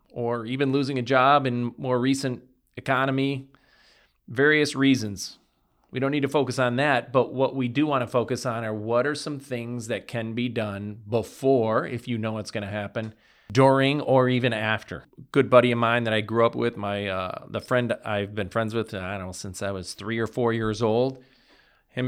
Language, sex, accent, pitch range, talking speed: English, male, American, 110-130 Hz, 205 wpm